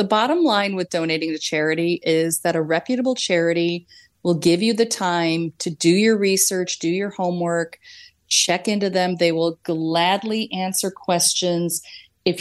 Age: 30-49